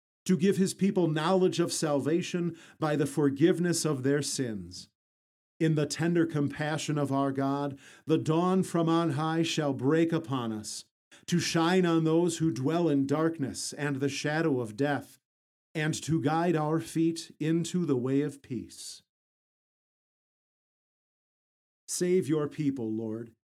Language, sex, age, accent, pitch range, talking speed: English, male, 50-69, American, 125-160 Hz, 145 wpm